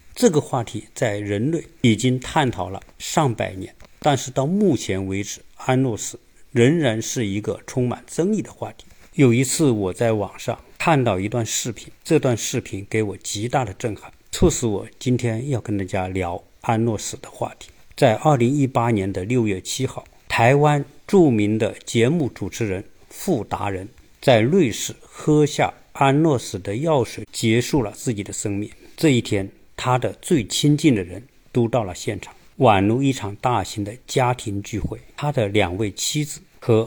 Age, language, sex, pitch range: 50-69, Chinese, male, 100-140 Hz